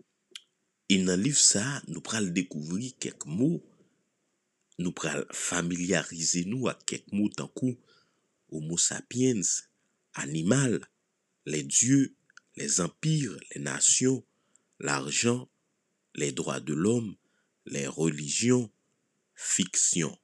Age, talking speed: 50-69, 100 wpm